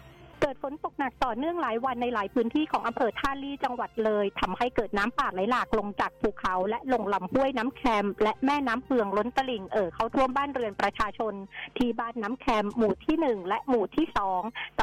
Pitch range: 205-250 Hz